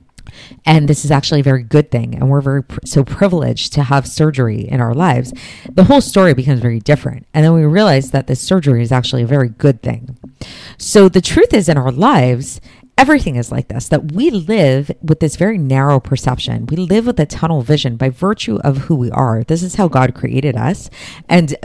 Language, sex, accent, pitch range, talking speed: English, female, American, 130-170 Hz, 215 wpm